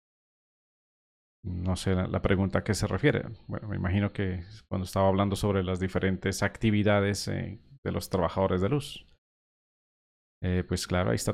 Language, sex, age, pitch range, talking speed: Spanish, male, 30-49, 85-105 Hz, 165 wpm